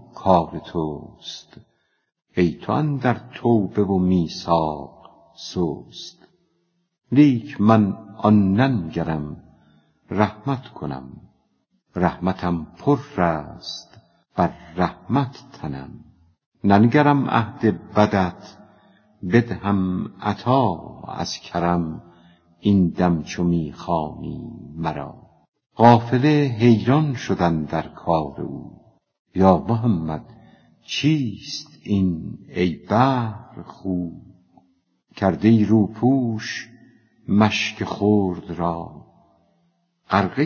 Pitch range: 85-120 Hz